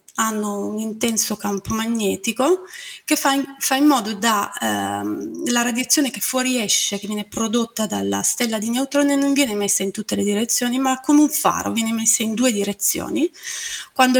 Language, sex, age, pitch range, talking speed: Italian, female, 20-39, 205-260 Hz, 170 wpm